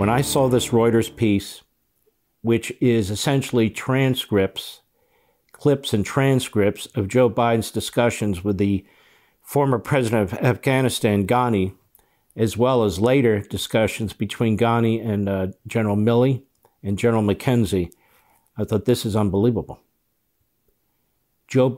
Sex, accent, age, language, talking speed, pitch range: male, American, 50-69, English, 120 wpm, 110-140 Hz